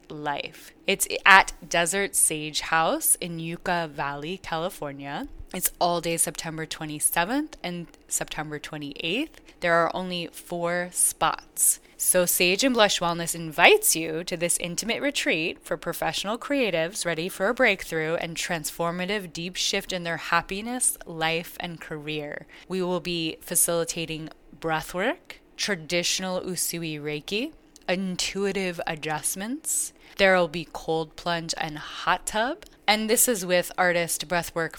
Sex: female